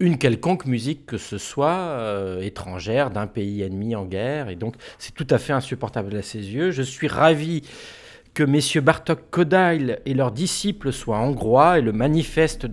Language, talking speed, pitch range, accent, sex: French, 180 wpm, 115-160 Hz, French, male